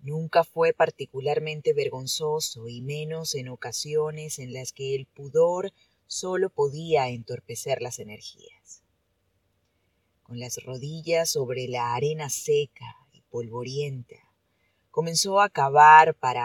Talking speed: 115 wpm